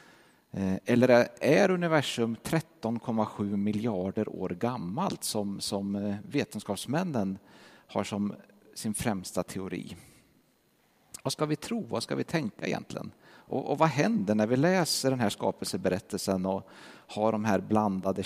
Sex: male